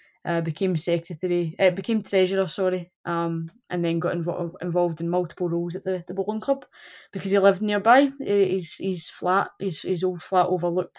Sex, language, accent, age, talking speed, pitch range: female, English, British, 20-39, 185 wpm, 180-205 Hz